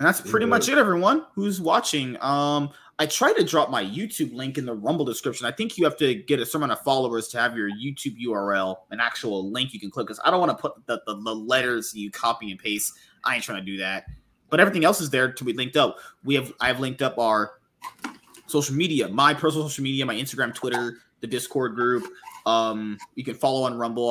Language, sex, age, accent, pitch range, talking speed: English, male, 20-39, American, 105-145 Hz, 235 wpm